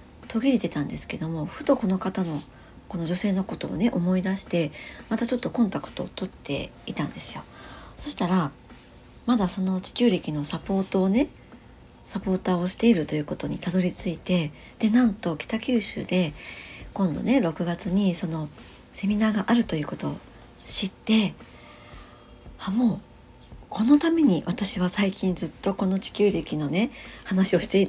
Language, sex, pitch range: Japanese, male, 165-220 Hz